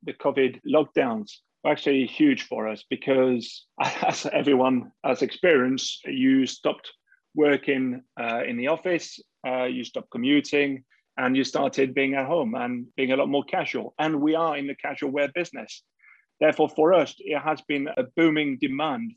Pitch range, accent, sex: 135-170 Hz, British, male